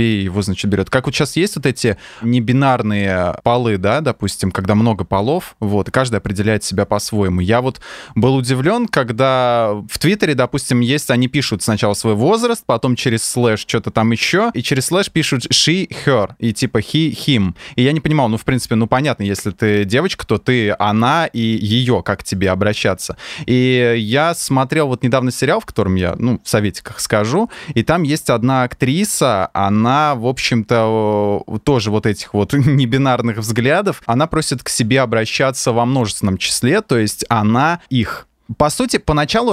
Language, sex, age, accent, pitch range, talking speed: Russian, male, 20-39, native, 110-140 Hz, 170 wpm